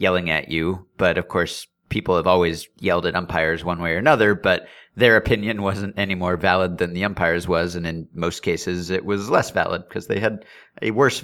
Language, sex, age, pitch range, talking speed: English, male, 30-49, 90-105 Hz, 215 wpm